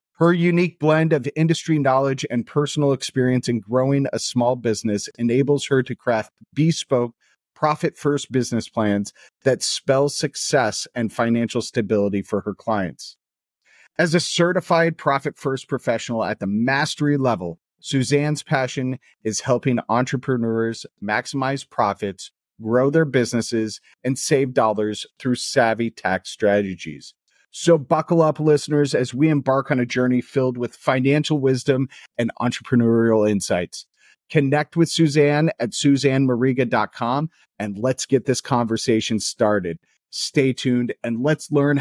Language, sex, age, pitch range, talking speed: English, male, 40-59, 115-145 Hz, 130 wpm